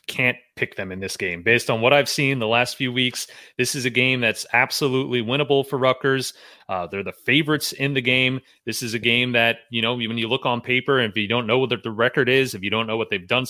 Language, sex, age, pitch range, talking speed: English, male, 30-49, 110-140 Hz, 260 wpm